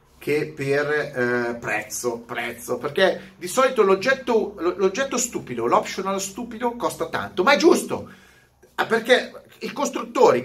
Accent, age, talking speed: native, 30-49, 125 wpm